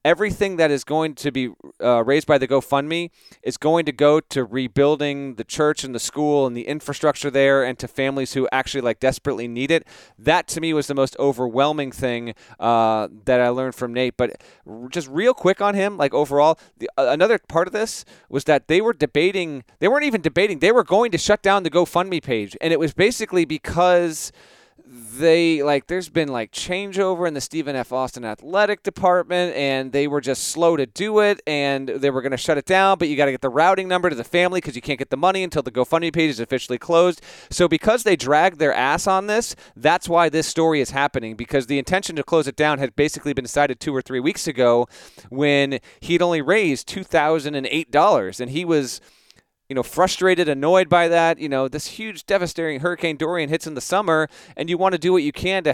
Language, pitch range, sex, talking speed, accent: English, 135-170 Hz, male, 215 wpm, American